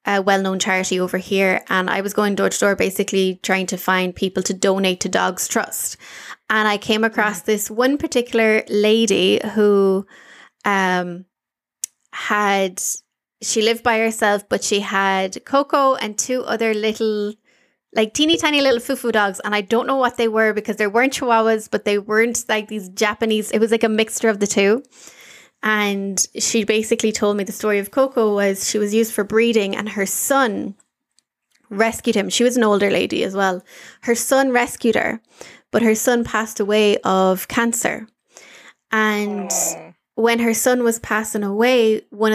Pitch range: 200-230 Hz